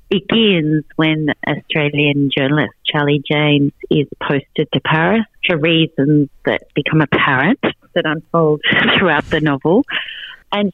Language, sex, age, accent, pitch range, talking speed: English, female, 40-59, Australian, 145-170 Hz, 125 wpm